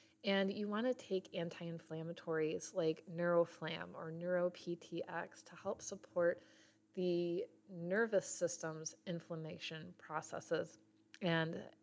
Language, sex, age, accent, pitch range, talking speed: English, female, 30-49, American, 170-190 Hz, 100 wpm